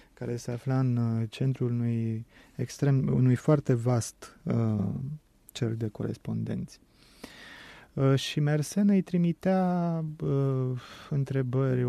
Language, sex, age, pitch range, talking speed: Romanian, male, 30-49, 120-145 Hz, 110 wpm